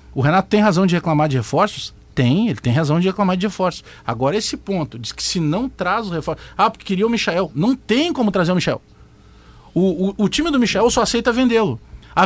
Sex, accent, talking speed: male, Brazilian, 230 wpm